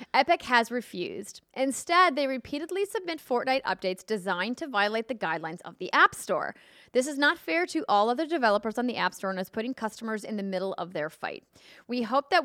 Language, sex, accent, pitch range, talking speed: English, female, American, 195-265 Hz, 205 wpm